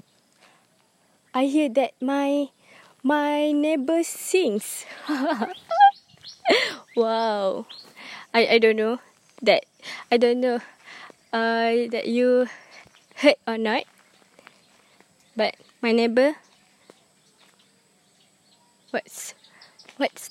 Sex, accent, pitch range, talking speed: female, Malaysian, 225-275 Hz, 80 wpm